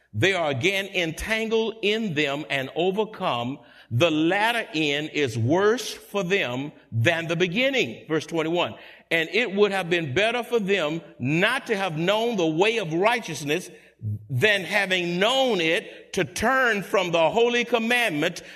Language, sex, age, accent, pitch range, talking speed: English, male, 50-69, American, 160-230 Hz, 150 wpm